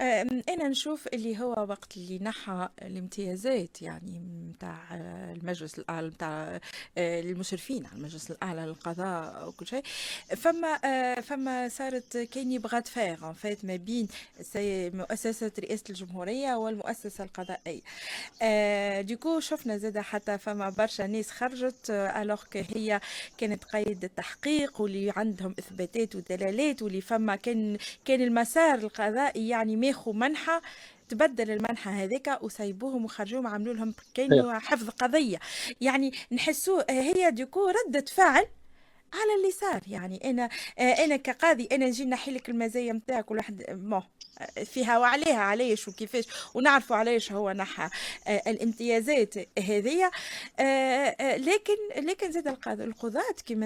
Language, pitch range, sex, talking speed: Arabic, 205-270 Hz, female, 115 wpm